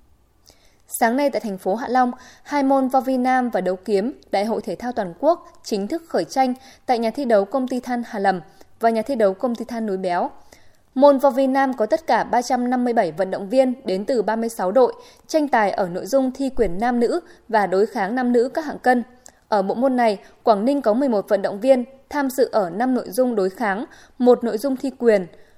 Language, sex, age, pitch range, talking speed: Vietnamese, female, 20-39, 210-270 Hz, 230 wpm